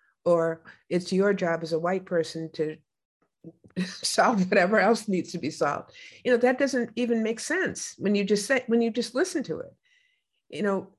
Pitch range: 175-225 Hz